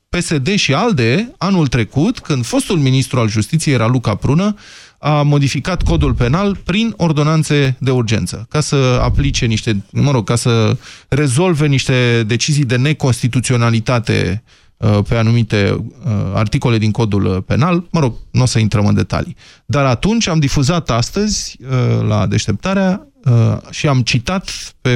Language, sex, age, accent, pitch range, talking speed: Romanian, male, 20-39, native, 115-155 Hz, 140 wpm